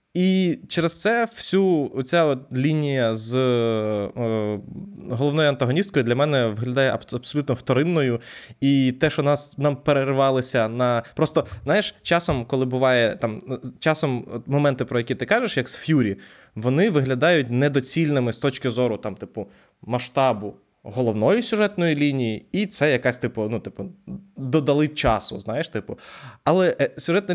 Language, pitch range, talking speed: Ukrainian, 120-150 Hz, 135 wpm